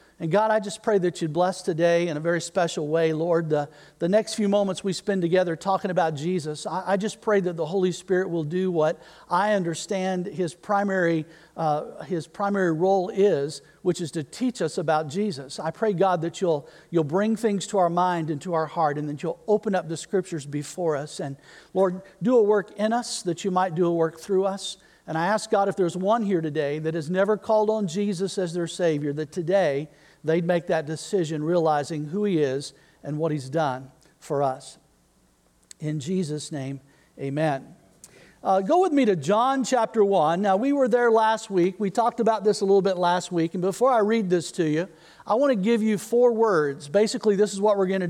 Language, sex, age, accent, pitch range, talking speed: English, male, 50-69, American, 165-210 Hz, 215 wpm